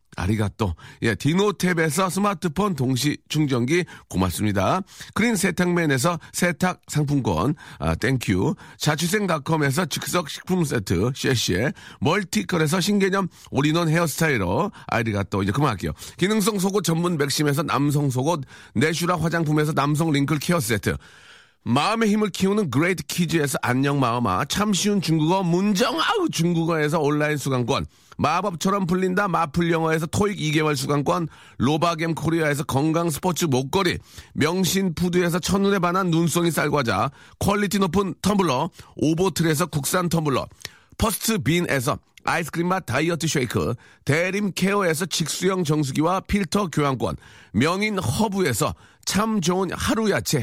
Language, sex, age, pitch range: Korean, male, 40-59, 140-185 Hz